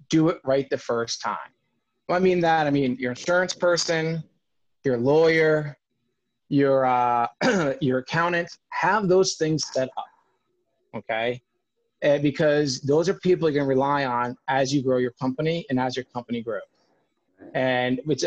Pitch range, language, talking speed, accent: 130-170 Hz, English, 150 wpm, American